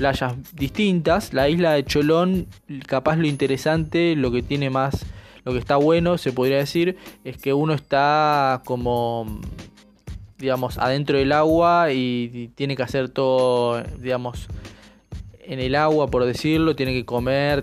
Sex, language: male, Spanish